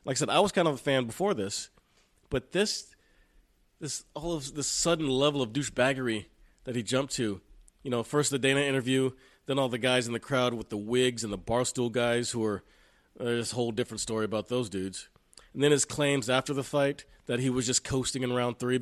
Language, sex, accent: English, male, American